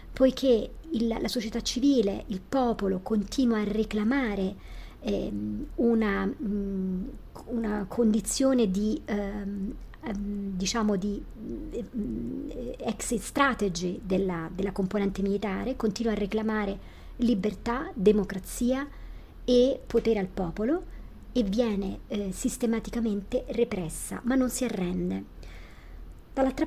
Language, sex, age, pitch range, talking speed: Italian, male, 50-69, 200-250 Hz, 95 wpm